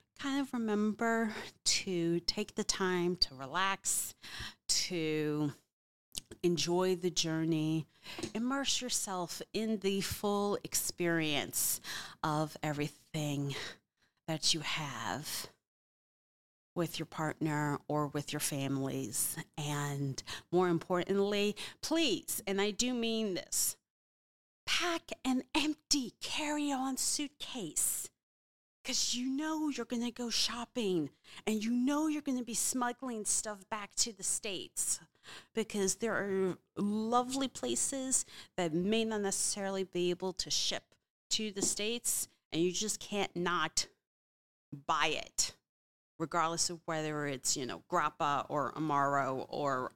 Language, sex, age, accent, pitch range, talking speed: English, female, 40-59, American, 150-225 Hz, 120 wpm